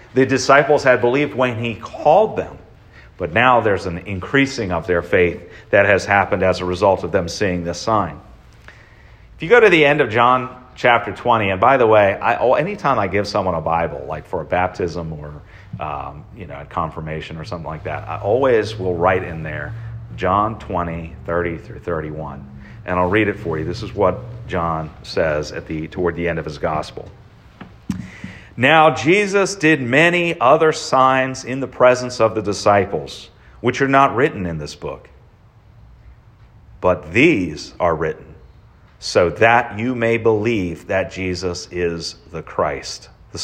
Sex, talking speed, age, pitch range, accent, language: male, 175 wpm, 40-59, 85-120 Hz, American, English